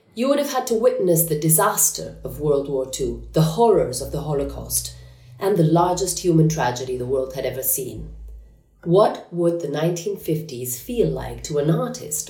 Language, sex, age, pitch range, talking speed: Italian, female, 30-49, 140-185 Hz, 175 wpm